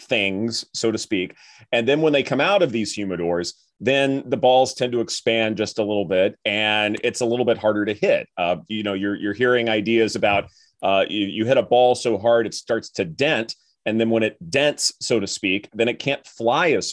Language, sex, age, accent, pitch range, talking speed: English, male, 30-49, American, 100-130 Hz, 225 wpm